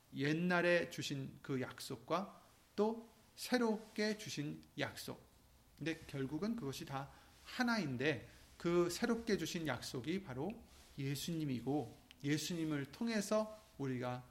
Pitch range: 125-200 Hz